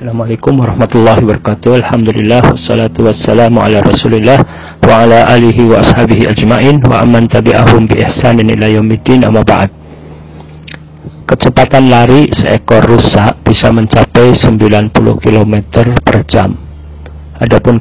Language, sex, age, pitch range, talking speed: Indonesian, male, 50-69, 105-120 Hz, 115 wpm